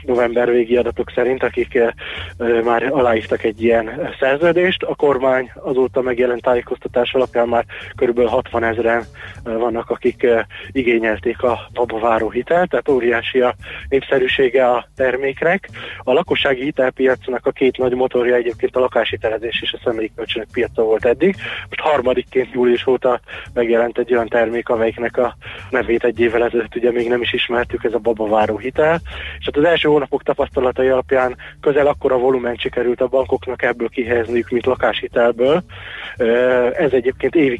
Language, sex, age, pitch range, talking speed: Hungarian, male, 20-39, 115-130 Hz, 150 wpm